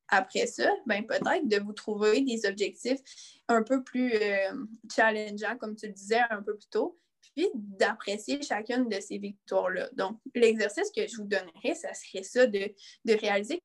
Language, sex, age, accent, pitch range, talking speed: French, female, 20-39, Canadian, 205-275 Hz, 175 wpm